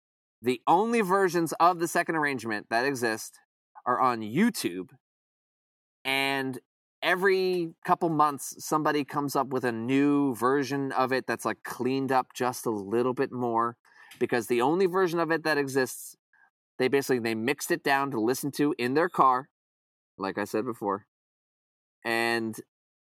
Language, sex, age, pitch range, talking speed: English, male, 20-39, 125-160 Hz, 150 wpm